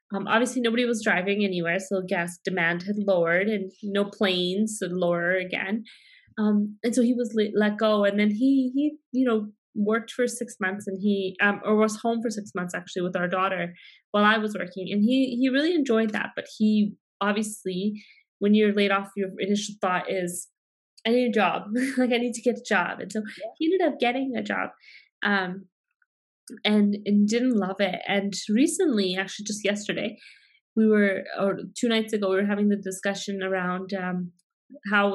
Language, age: English, 20-39